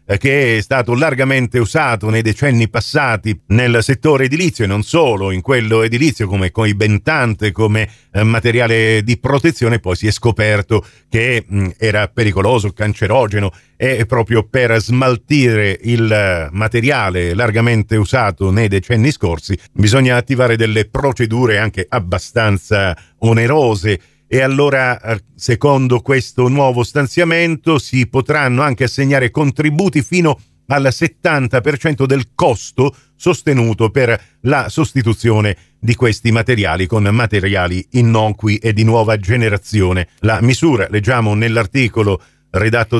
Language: Italian